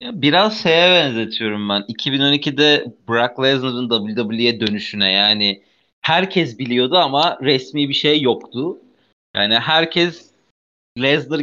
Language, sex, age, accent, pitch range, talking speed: Turkish, male, 40-59, native, 125-180 Hz, 105 wpm